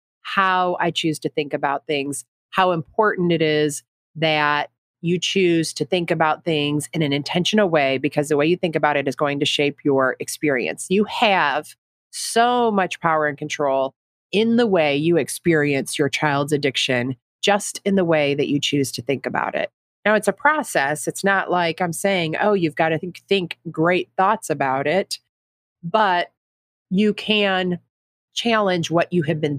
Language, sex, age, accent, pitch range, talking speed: English, female, 30-49, American, 145-195 Hz, 175 wpm